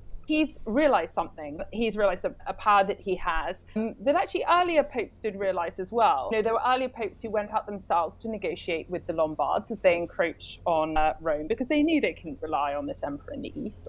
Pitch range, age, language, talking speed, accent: 190-280 Hz, 30-49, English, 220 wpm, British